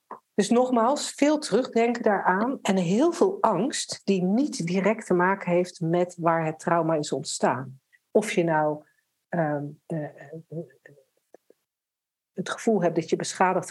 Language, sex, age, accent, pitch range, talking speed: Dutch, female, 60-79, Dutch, 170-215 Hz, 140 wpm